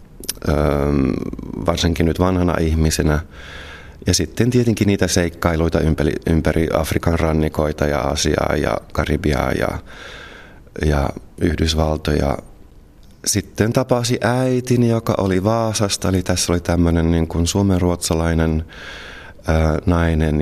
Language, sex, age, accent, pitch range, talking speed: Finnish, male, 30-49, native, 80-90 Hz, 95 wpm